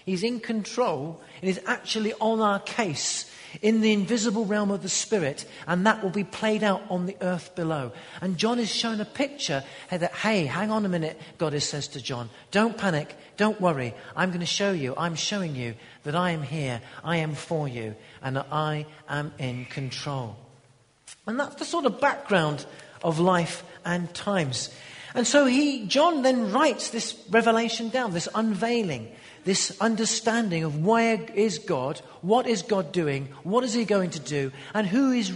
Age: 40-59